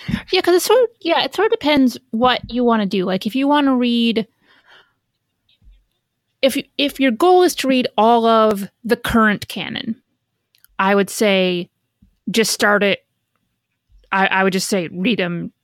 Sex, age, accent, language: female, 30-49, American, English